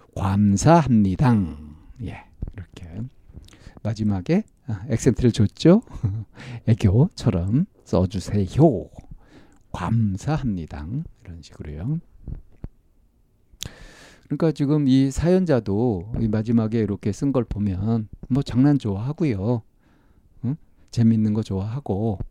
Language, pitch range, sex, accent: Korean, 100-140 Hz, male, native